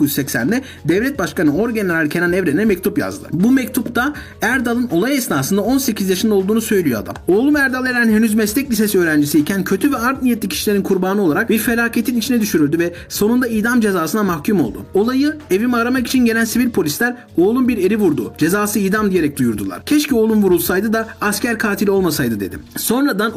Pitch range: 170-240 Hz